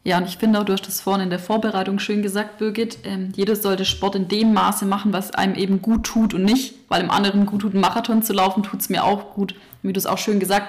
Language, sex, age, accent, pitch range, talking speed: German, female, 20-39, German, 190-220 Hz, 285 wpm